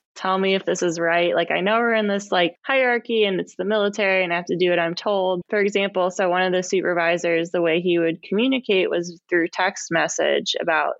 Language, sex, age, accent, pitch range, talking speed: English, female, 20-39, American, 175-200 Hz, 235 wpm